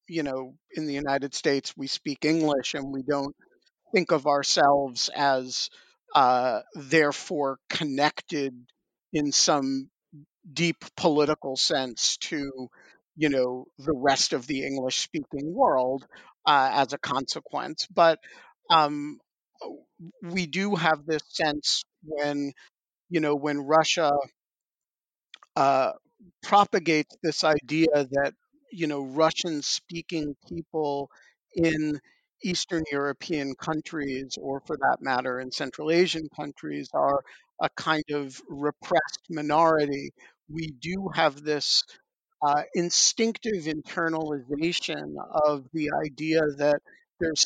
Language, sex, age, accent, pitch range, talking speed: English, male, 50-69, American, 140-165 Hz, 110 wpm